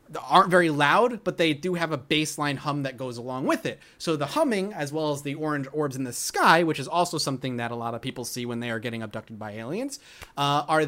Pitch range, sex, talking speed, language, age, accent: 140-205 Hz, male, 255 wpm, English, 30-49, American